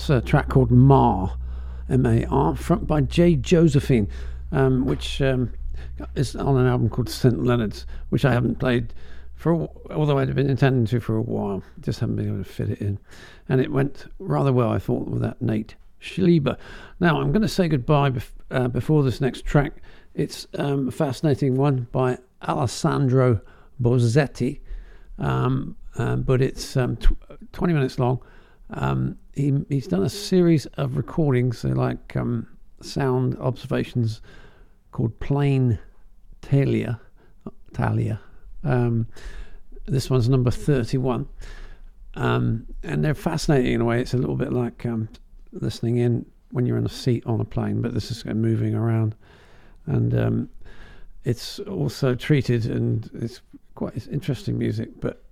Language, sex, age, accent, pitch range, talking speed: English, male, 50-69, British, 105-135 Hz, 150 wpm